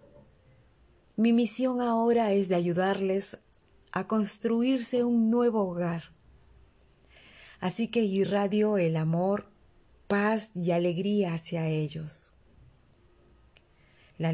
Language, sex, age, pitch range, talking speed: Spanish, female, 30-49, 160-205 Hz, 90 wpm